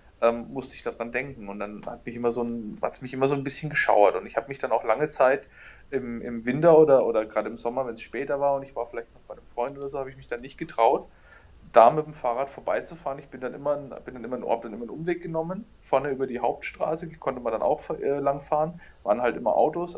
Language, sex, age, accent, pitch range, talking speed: German, male, 30-49, German, 115-140 Hz, 255 wpm